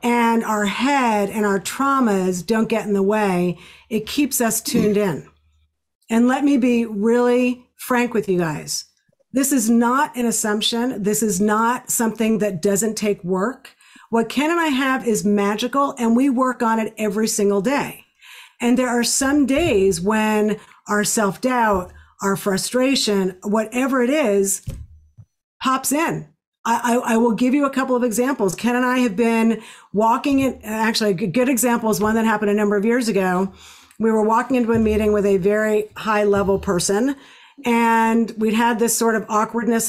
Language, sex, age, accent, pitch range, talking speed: English, female, 50-69, American, 210-245 Hz, 175 wpm